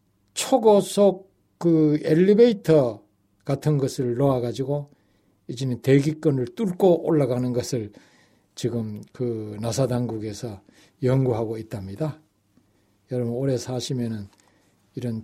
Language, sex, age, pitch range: Korean, male, 60-79, 110-170 Hz